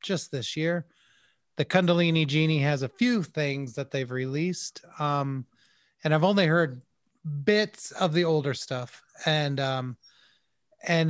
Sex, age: male, 30-49